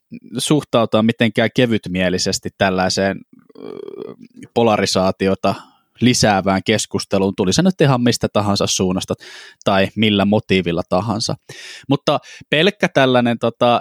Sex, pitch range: male, 105-145 Hz